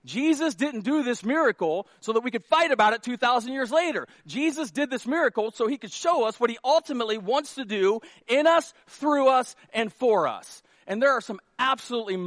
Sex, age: male, 40-59